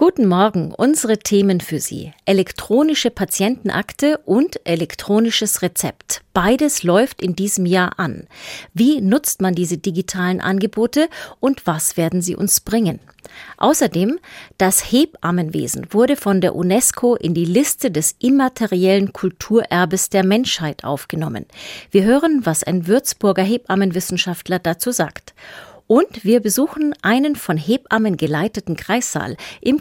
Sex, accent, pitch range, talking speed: female, German, 180-240 Hz, 125 wpm